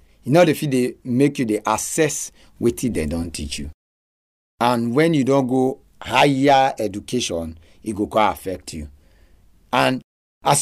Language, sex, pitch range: English, male, 90-145 Hz